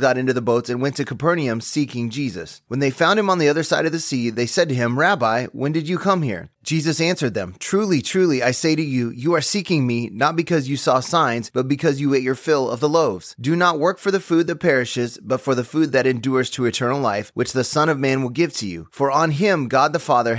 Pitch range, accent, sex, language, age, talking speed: 130-170 Hz, American, male, English, 30-49, 265 wpm